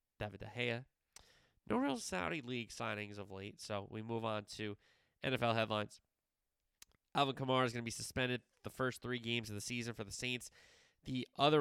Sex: male